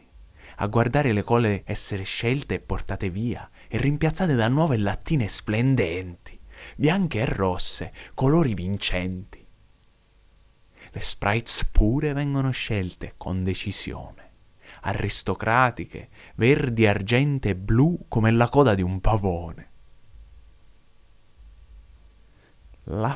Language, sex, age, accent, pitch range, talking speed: Italian, male, 30-49, native, 90-140 Hz, 100 wpm